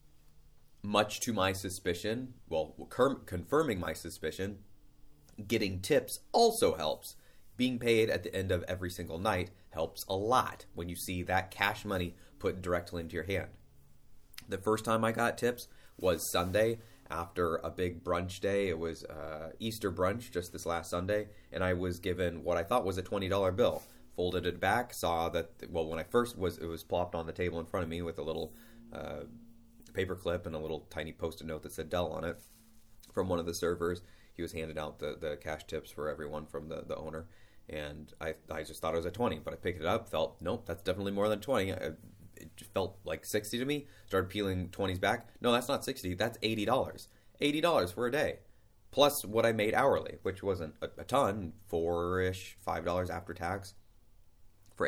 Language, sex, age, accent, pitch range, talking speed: English, male, 30-49, American, 85-110 Hz, 200 wpm